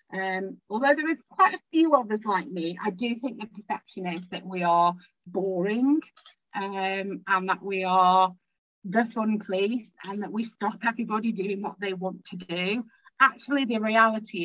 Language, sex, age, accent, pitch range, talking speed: English, female, 40-59, British, 185-230 Hz, 175 wpm